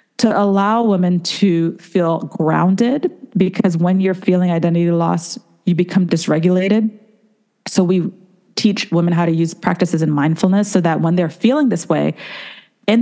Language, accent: English, American